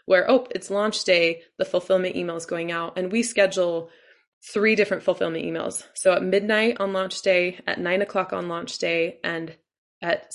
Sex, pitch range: female, 175-215 Hz